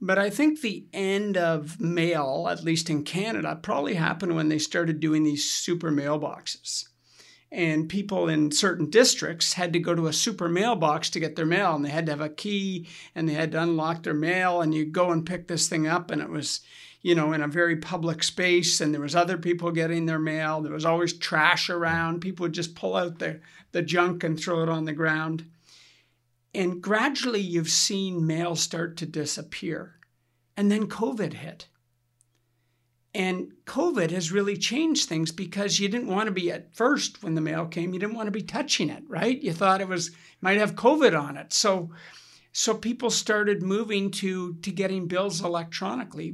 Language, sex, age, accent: English, male, 50-69, American